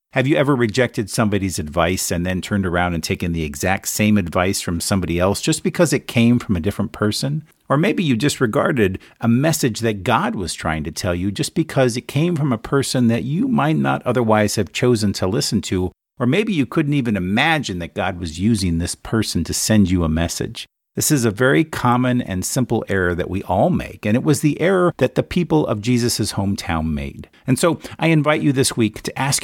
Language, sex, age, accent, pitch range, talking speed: English, male, 50-69, American, 95-130 Hz, 220 wpm